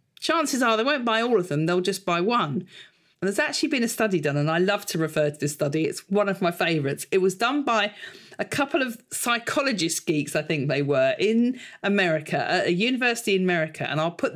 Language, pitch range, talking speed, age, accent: English, 155-225 Hz, 230 wpm, 40-59, British